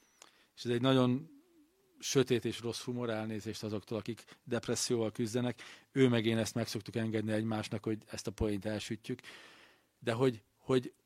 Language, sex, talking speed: Hungarian, male, 155 wpm